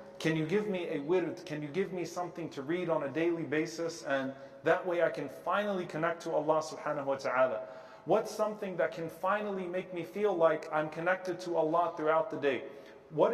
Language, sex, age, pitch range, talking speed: English, male, 40-59, 160-200 Hz, 205 wpm